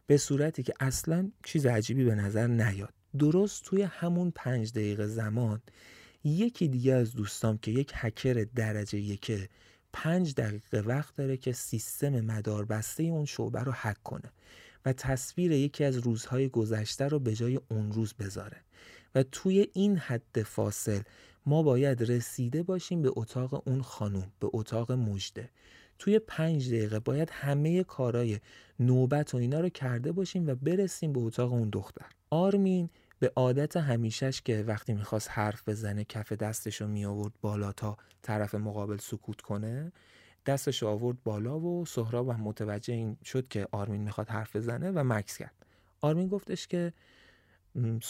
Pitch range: 110-145 Hz